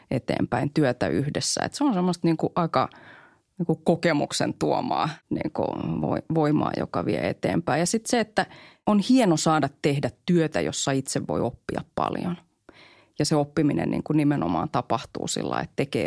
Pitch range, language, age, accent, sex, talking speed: 130-155 Hz, Finnish, 30-49, native, female, 165 wpm